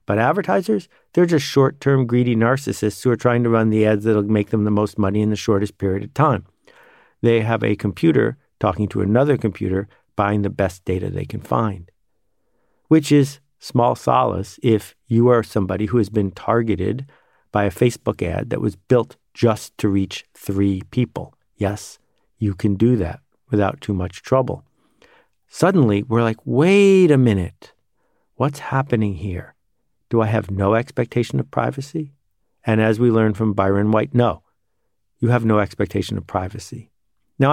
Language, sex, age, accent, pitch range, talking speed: English, male, 50-69, American, 100-120 Hz, 170 wpm